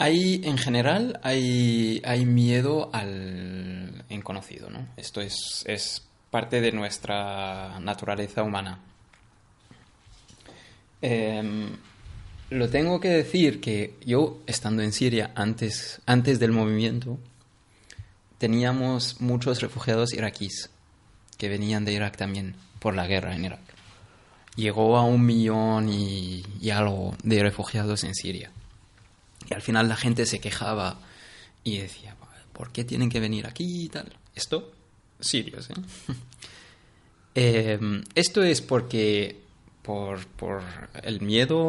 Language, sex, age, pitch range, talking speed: Spanish, male, 20-39, 100-120 Hz, 120 wpm